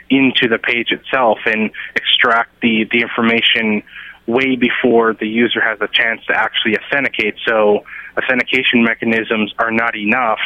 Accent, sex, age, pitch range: American, male, 30-49, 110-120 Hz